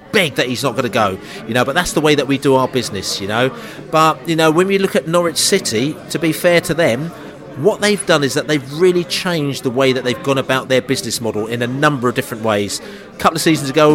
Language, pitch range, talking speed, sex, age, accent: English, 125-160 Hz, 265 wpm, male, 40-59, British